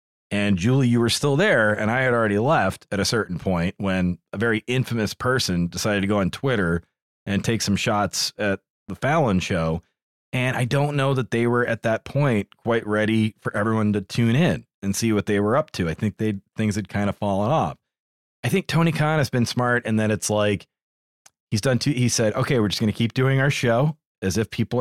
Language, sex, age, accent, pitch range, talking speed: English, male, 30-49, American, 100-125 Hz, 225 wpm